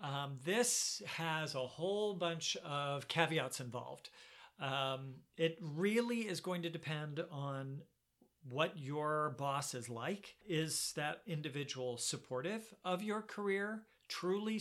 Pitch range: 140-175 Hz